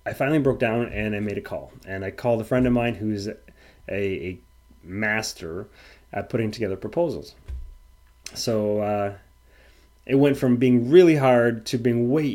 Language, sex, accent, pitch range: English, male, American, 95-125 Hz